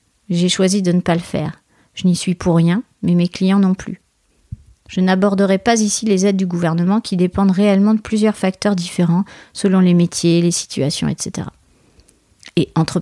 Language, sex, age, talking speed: French, female, 40-59, 185 wpm